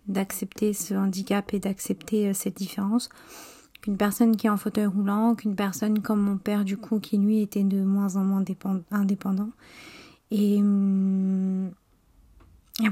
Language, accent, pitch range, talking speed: French, French, 195-220 Hz, 150 wpm